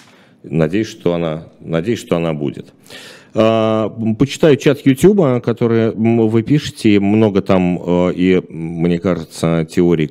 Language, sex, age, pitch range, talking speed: Russian, male, 40-59, 85-115 Hz, 120 wpm